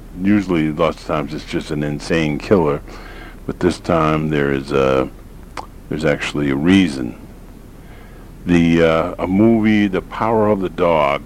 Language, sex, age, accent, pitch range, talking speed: English, male, 50-69, American, 75-95 Hz, 150 wpm